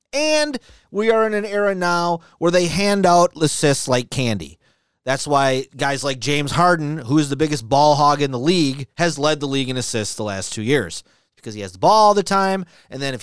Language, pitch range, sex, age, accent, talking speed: English, 135-170 Hz, male, 30-49, American, 225 wpm